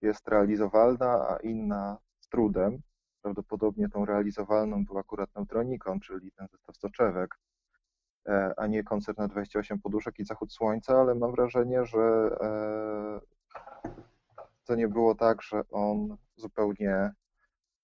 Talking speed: 120 wpm